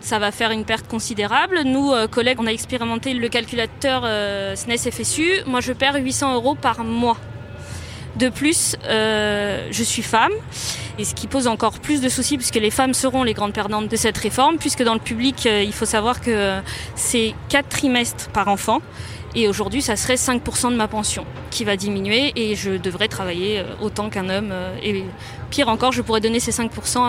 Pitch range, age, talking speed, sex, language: 205-260 Hz, 20-39, 185 wpm, female, French